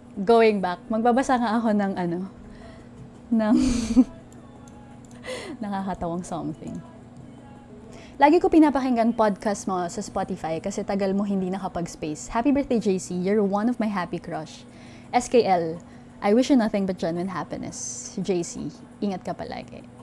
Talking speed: 130 wpm